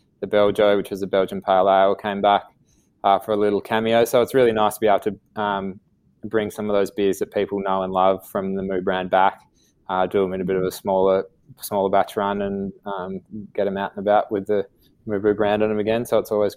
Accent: Australian